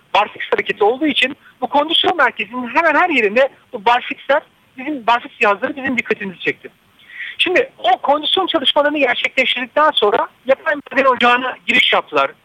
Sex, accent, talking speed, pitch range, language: male, native, 140 wpm, 230-320 Hz, Turkish